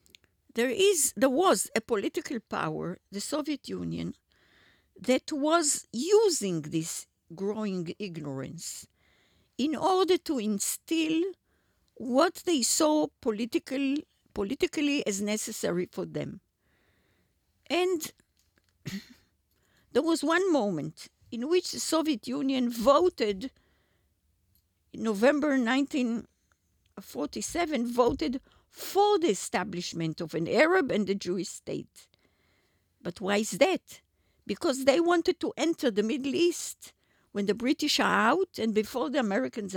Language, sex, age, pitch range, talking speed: Hebrew, female, 50-69, 185-290 Hz, 115 wpm